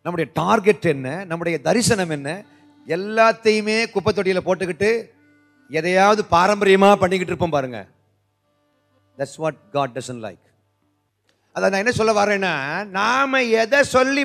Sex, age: male, 30-49